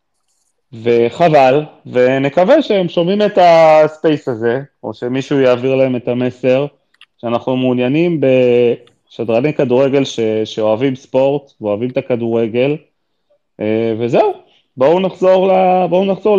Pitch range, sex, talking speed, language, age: 115-140 Hz, male, 105 wpm, Hebrew, 30-49